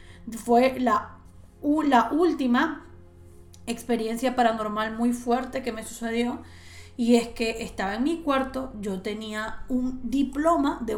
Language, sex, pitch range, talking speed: Spanish, female, 220-275 Hz, 125 wpm